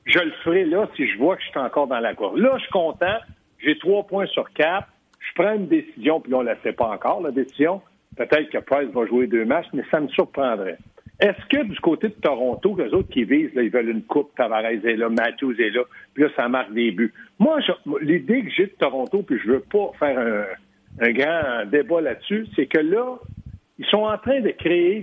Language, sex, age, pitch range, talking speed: French, male, 60-79, 130-215 Hz, 240 wpm